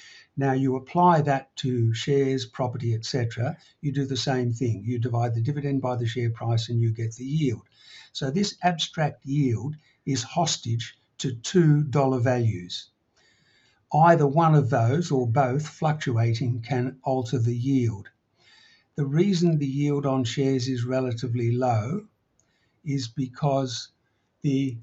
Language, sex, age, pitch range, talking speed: English, male, 60-79, 125-150 Hz, 145 wpm